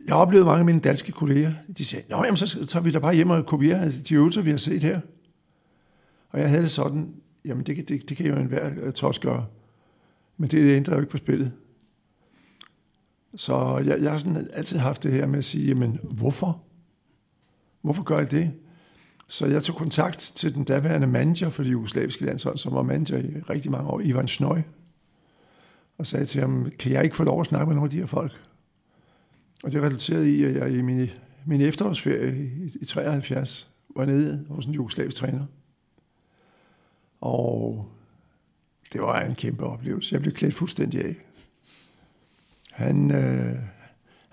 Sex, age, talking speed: male, 60-79, 180 wpm